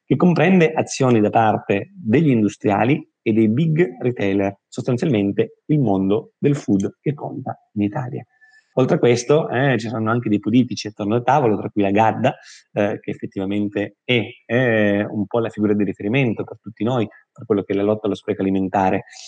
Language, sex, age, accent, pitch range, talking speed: Italian, male, 30-49, native, 105-135 Hz, 185 wpm